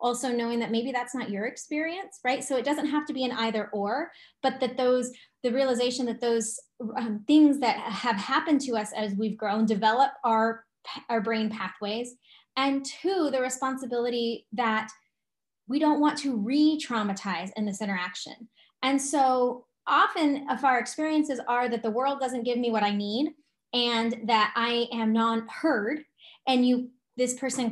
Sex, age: female, 10-29